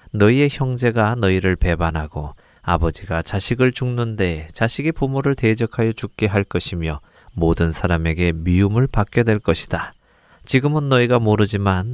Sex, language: male, Korean